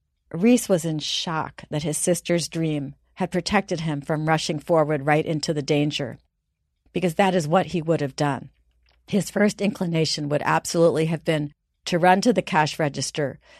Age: 40-59